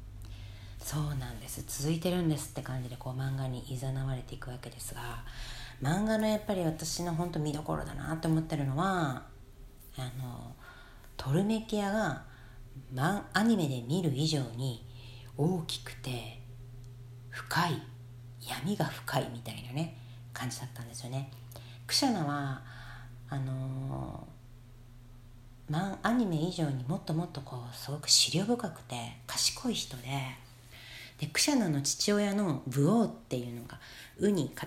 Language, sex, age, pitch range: Japanese, female, 40-59, 120-165 Hz